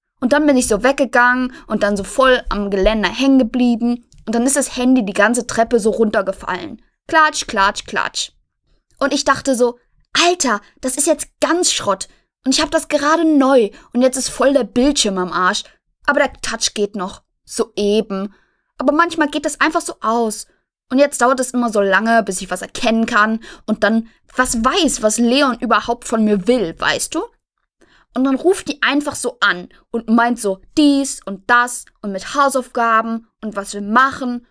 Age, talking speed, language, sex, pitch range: 20-39, 190 wpm, German, female, 215-275 Hz